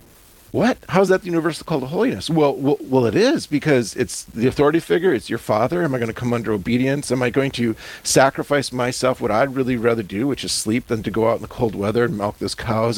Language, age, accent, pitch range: English, 40-59, American, 120-150 Hz